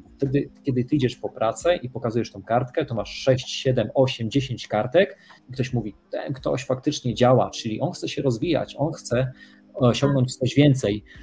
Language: Polish